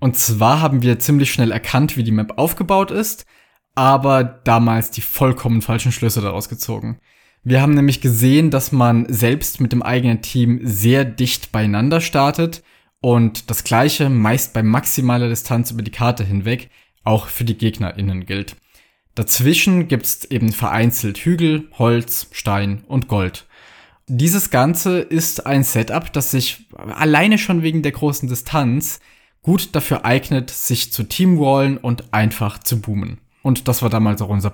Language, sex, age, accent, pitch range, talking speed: German, male, 20-39, German, 115-140 Hz, 155 wpm